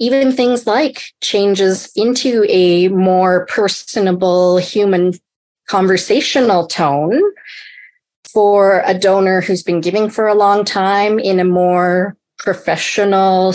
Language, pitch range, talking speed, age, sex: English, 185-240 Hz, 110 wpm, 30-49, female